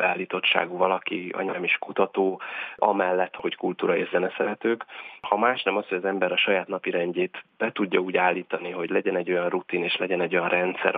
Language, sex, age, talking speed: Hungarian, male, 20-39, 190 wpm